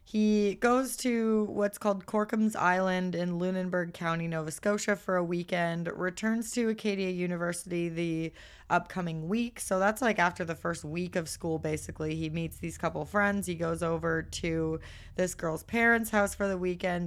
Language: English